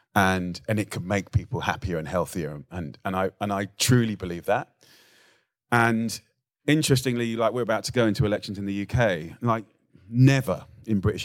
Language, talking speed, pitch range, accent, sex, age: English, 175 wpm, 95-125 Hz, British, male, 30-49